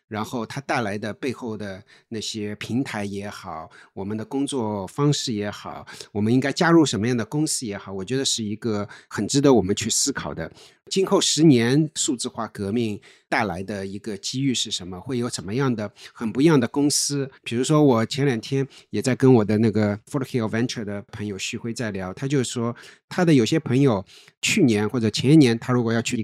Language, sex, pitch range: Chinese, male, 110-150 Hz